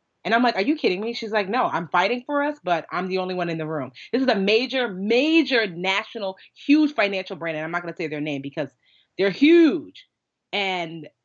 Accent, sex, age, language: American, female, 30-49, English